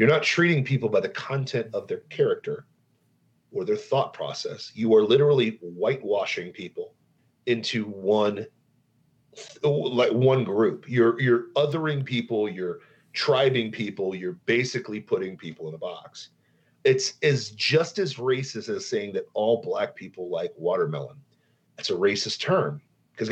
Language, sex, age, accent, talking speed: English, male, 40-59, American, 145 wpm